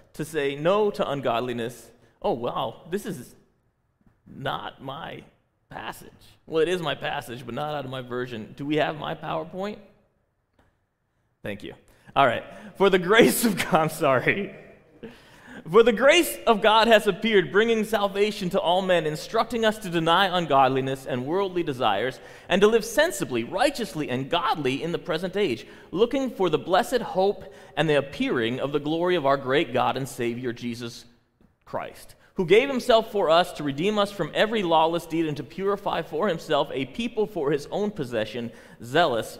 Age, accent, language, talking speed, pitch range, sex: 30-49, American, English, 170 wpm, 150-220 Hz, male